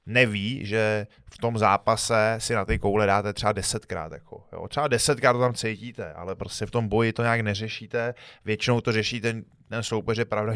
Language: Czech